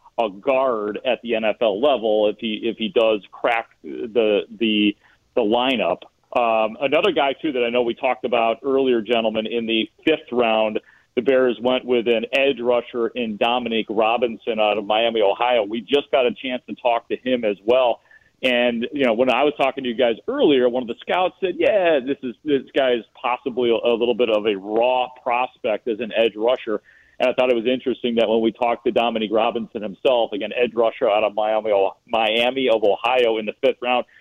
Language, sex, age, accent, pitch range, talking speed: English, male, 40-59, American, 115-130 Hz, 205 wpm